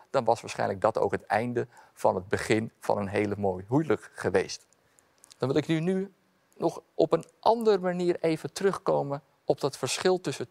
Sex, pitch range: male, 110-160 Hz